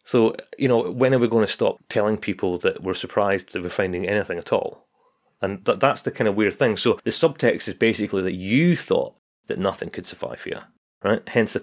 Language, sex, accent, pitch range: English, male, British, 100-125 Hz